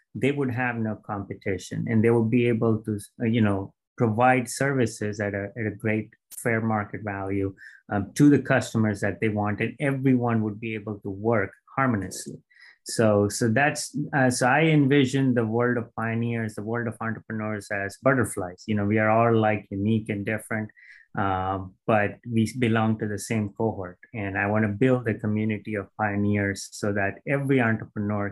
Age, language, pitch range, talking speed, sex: 30-49, English, 100-120 Hz, 180 wpm, male